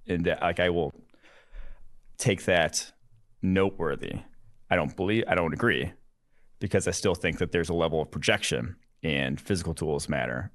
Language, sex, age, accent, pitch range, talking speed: English, male, 30-49, American, 85-100 Hz, 160 wpm